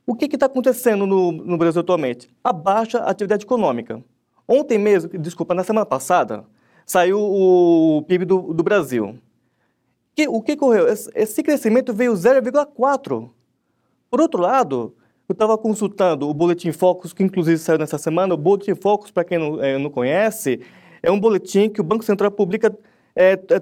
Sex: male